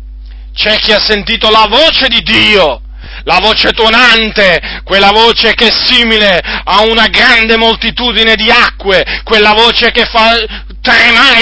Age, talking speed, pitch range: 40-59, 140 wpm, 200-240 Hz